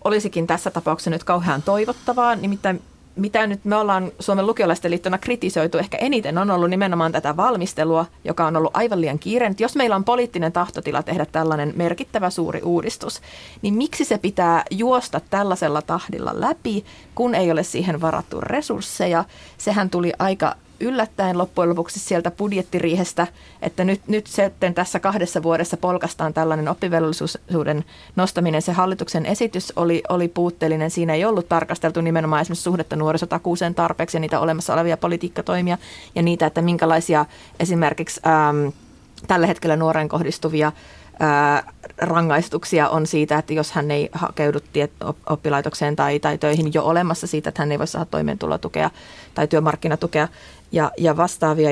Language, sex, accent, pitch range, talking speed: Finnish, female, native, 160-185 Hz, 150 wpm